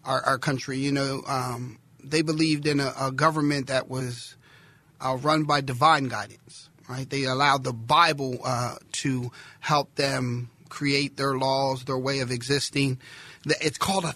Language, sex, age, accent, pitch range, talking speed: English, male, 40-59, American, 135-175 Hz, 160 wpm